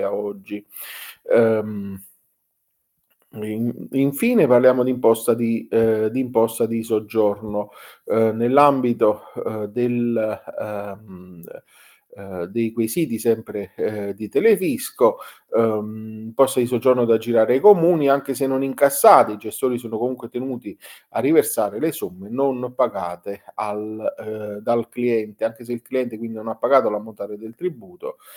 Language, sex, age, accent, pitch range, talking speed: Italian, male, 40-59, native, 105-130 Hz, 140 wpm